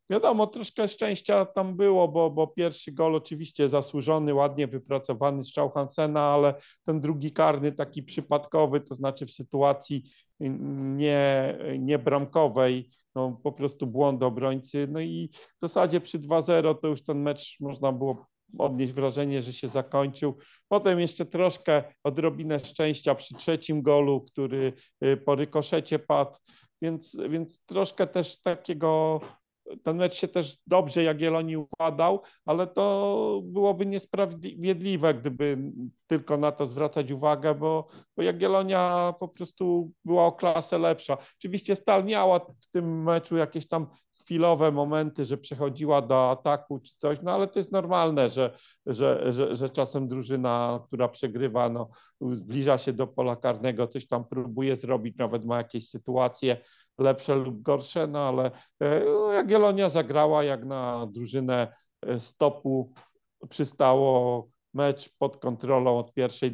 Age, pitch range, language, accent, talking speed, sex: 40-59, 130-165 Hz, Polish, native, 140 wpm, male